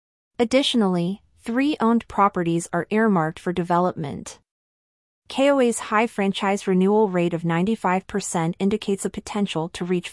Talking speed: 120 wpm